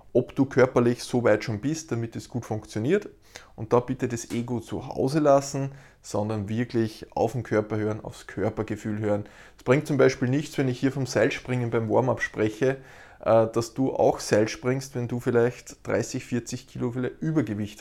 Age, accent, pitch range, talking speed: 20-39, Austrian, 110-135 Hz, 175 wpm